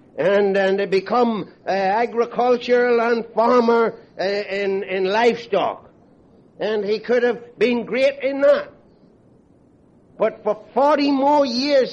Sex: male